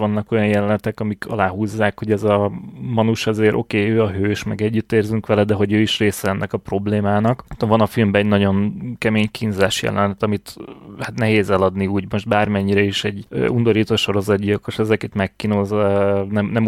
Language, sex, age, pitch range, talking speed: Hungarian, male, 20-39, 105-120 Hz, 180 wpm